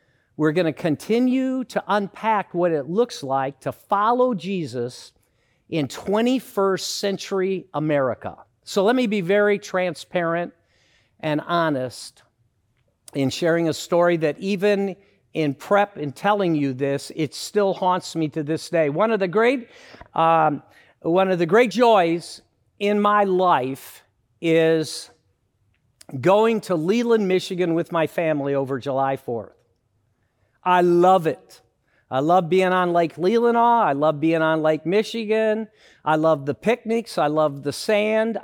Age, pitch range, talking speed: 50-69, 150-210 Hz, 135 wpm